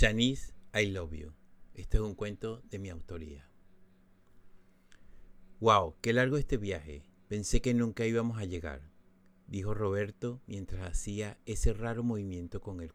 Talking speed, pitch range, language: 150 wpm, 90-105 Hz, Spanish